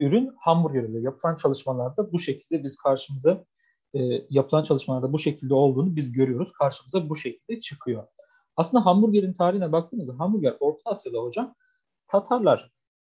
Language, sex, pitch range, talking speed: Turkish, male, 135-215 Hz, 135 wpm